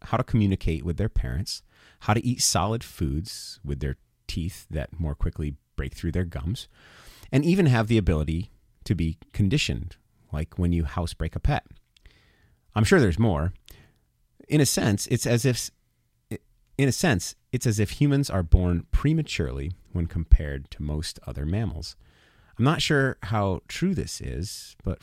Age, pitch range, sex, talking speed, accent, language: 30-49, 80-110 Hz, male, 165 wpm, American, English